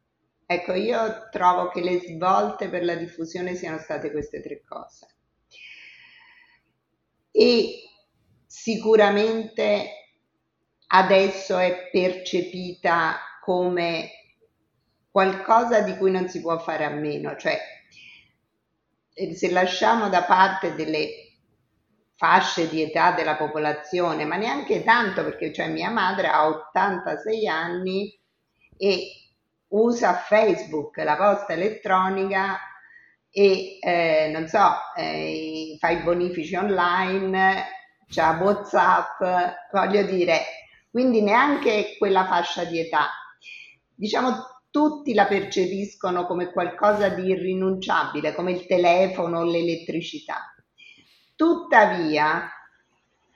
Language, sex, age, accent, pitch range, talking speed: Italian, female, 50-69, native, 170-210 Hz, 100 wpm